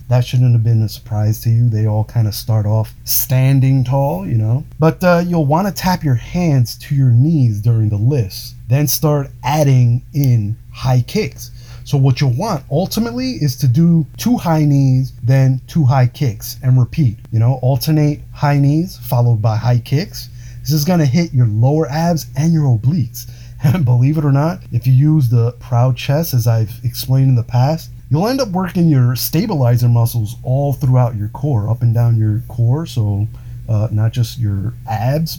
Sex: male